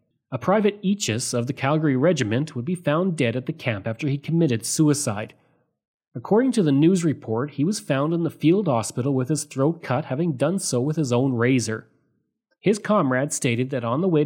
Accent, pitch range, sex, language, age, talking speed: Canadian, 125-170 Hz, male, English, 30-49, 200 wpm